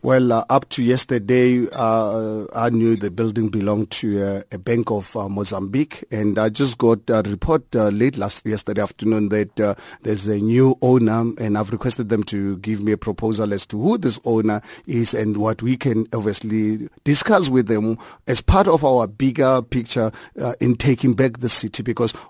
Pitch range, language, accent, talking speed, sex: 110-130 Hz, English, South African, 190 wpm, male